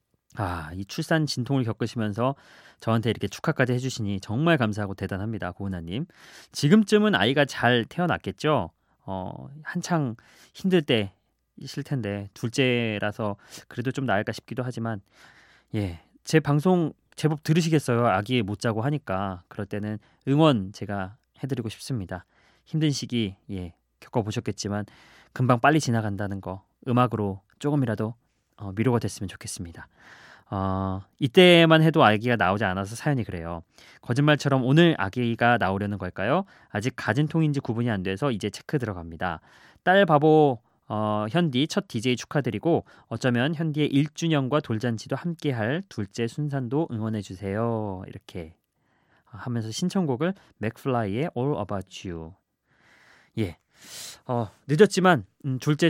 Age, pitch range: 20-39, 105-145 Hz